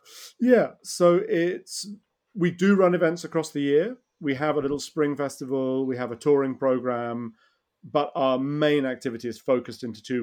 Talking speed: 170 wpm